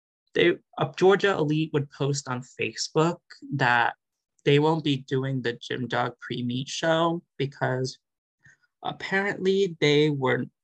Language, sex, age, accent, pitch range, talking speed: English, male, 20-39, American, 125-160 Hz, 135 wpm